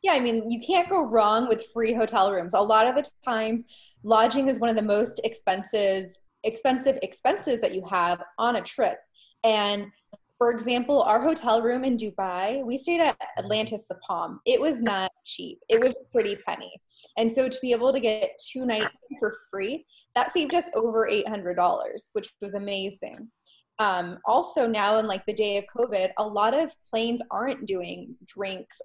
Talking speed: 185 wpm